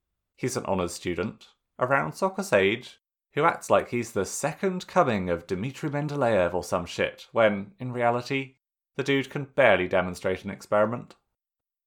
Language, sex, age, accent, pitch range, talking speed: English, male, 30-49, British, 95-130 Hz, 150 wpm